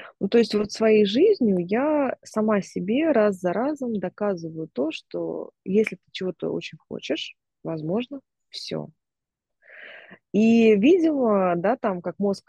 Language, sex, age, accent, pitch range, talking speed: Russian, female, 20-39, native, 165-215 Hz, 135 wpm